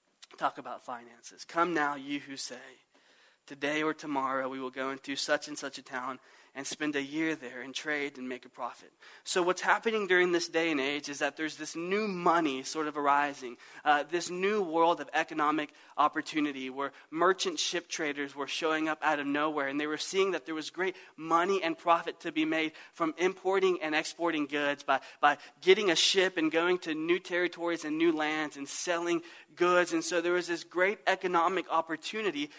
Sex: male